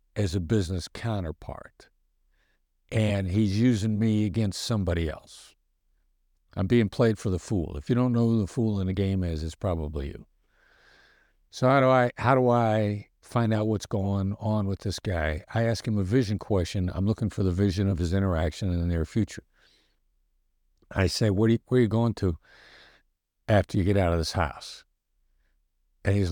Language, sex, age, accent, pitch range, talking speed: German, male, 60-79, American, 85-115 Hz, 190 wpm